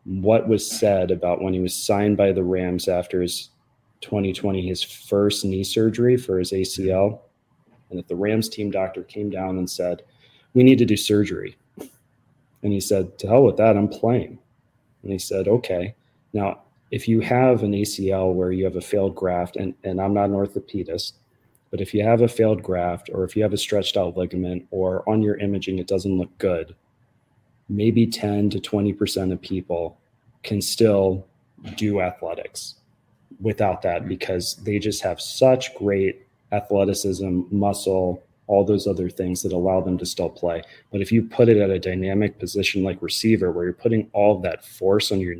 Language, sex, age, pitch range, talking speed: English, male, 30-49, 95-110 Hz, 185 wpm